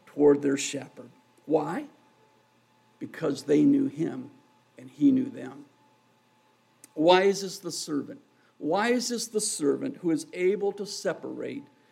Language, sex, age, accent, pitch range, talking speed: English, male, 50-69, American, 145-240 Hz, 120 wpm